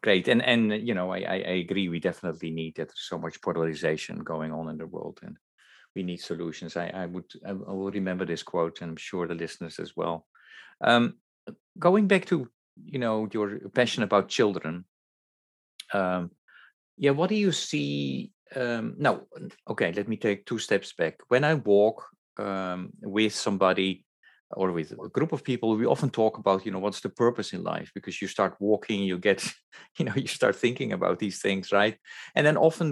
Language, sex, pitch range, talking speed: English, male, 95-120 Hz, 195 wpm